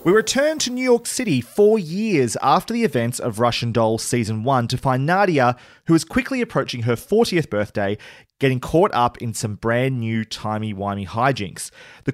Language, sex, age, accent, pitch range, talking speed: English, male, 30-49, Australian, 120-185 Hz, 180 wpm